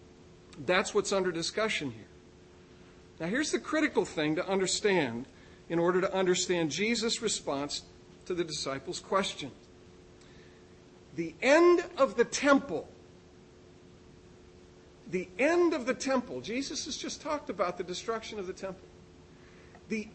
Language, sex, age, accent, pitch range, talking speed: English, male, 50-69, American, 160-255 Hz, 130 wpm